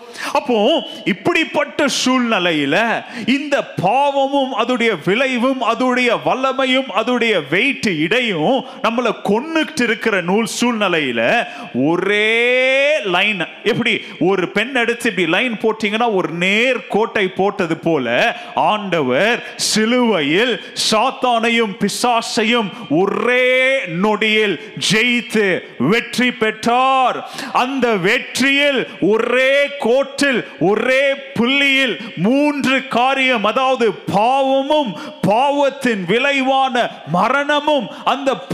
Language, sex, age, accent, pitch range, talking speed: Tamil, male, 30-49, native, 215-265 Hz, 35 wpm